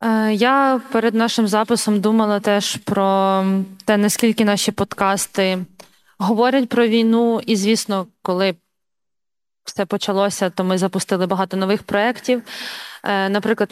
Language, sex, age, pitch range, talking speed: Ukrainian, female, 20-39, 195-230 Hz, 115 wpm